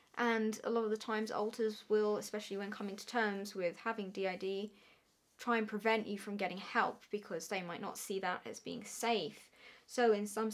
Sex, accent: female, British